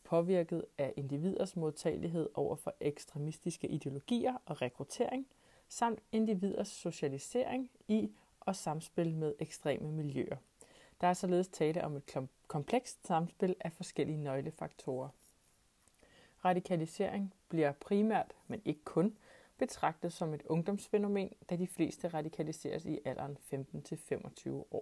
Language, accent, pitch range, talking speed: Danish, native, 155-205 Hz, 115 wpm